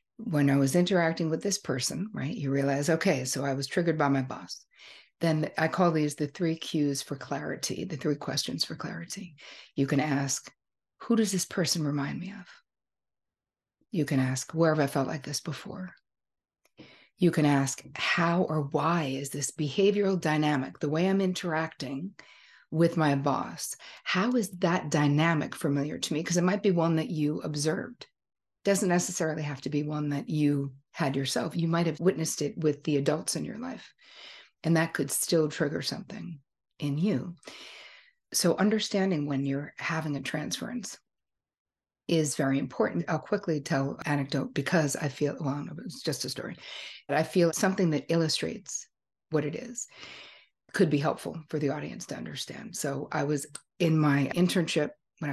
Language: English